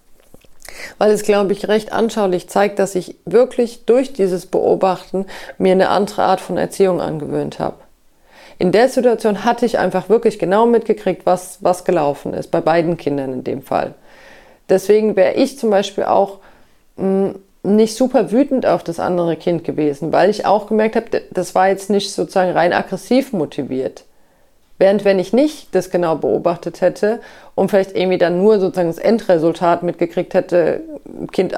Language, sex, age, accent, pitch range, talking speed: German, female, 40-59, German, 180-225 Hz, 165 wpm